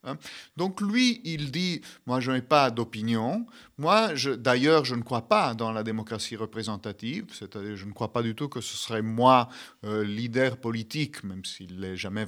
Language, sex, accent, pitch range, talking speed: French, male, French, 110-150 Hz, 190 wpm